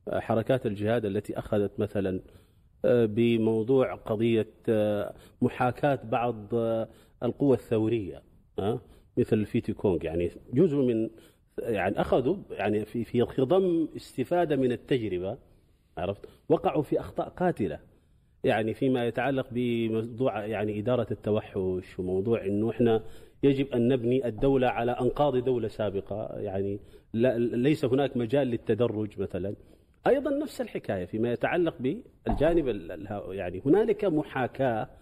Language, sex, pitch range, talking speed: Arabic, male, 110-140 Hz, 110 wpm